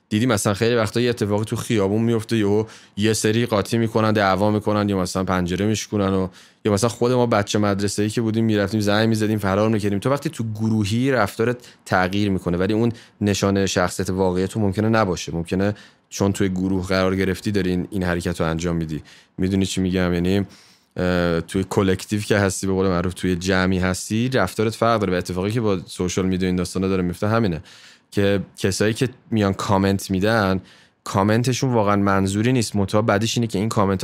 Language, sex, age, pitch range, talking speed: Persian, male, 20-39, 90-110 Hz, 170 wpm